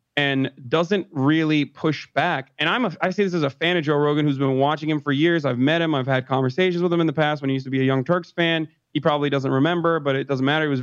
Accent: American